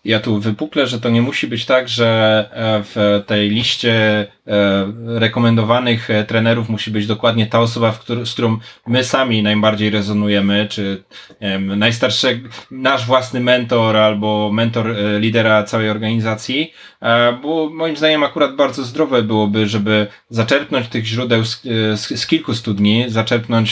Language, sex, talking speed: Polish, male, 130 wpm